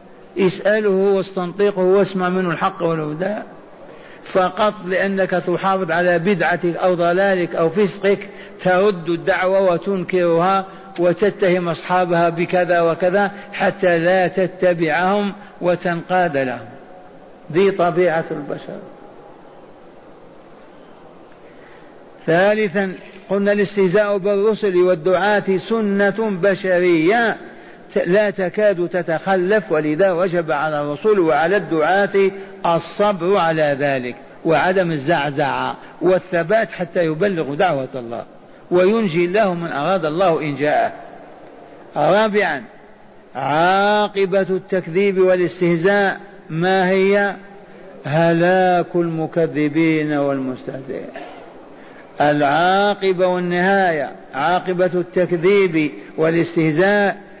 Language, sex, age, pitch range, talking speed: Arabic, male, 60-79, 170-195 Hz, 80 wpm